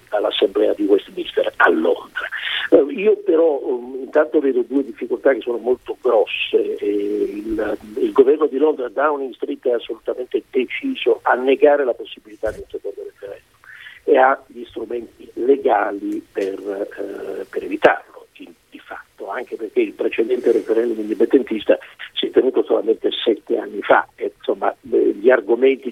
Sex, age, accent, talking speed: male, 50-69, native, 135 wpm